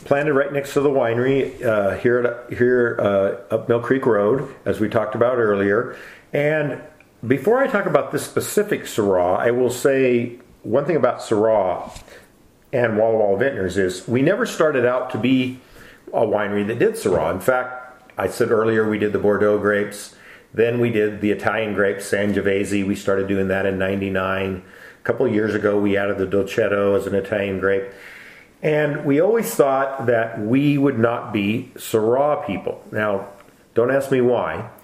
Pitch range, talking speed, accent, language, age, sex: 100-125 Hz, 175 wpm, American, English, 50-69, male